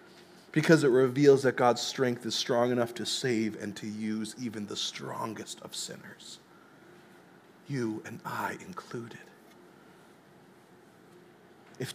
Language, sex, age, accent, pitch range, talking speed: English, male, 30-49, American, 150-210 Hz, 120 wpm